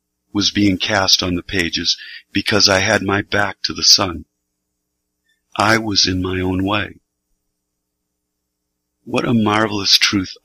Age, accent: 50-69, American